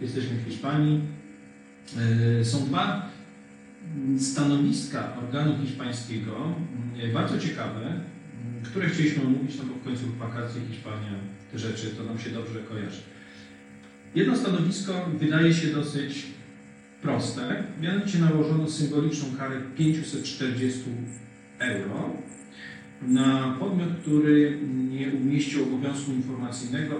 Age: 40-59